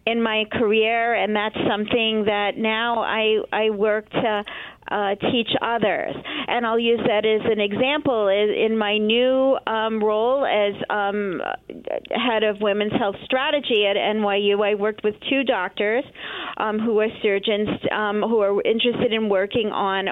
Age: 40-59